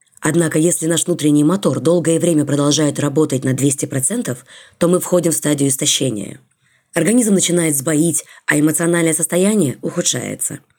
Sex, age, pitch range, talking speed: female, 20-39, 145-185 Hz, 135 wpm